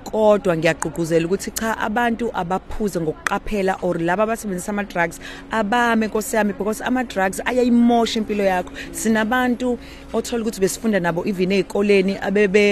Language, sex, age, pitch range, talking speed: English, female, 40-59, 155-195 Hz, 135 wpm